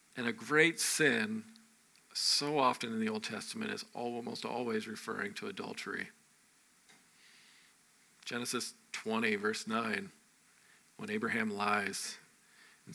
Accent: American